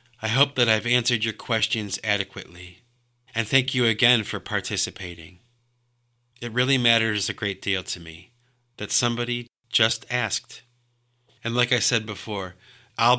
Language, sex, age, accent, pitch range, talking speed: English, male, 30-49, American, 100-120 Hz, 145 wpm